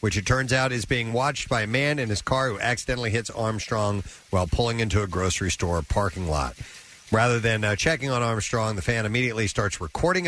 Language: English